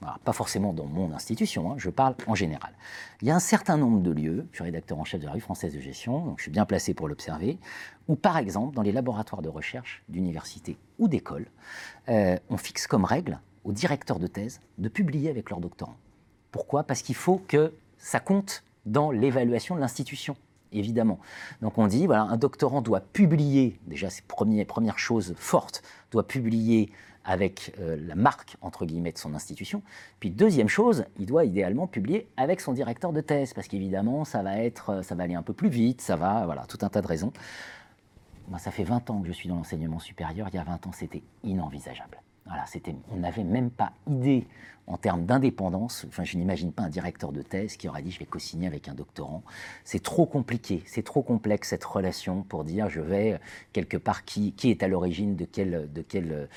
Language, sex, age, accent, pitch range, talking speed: French, male, 40-59, French, 90-125 Hz, 215 wpm